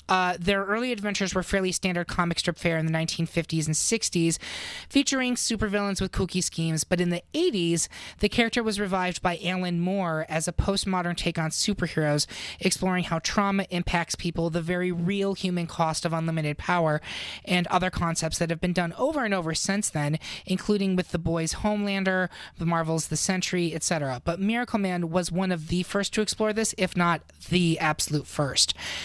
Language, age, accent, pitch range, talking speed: English, 30-49, American, 165-200 Hz, 185 wpm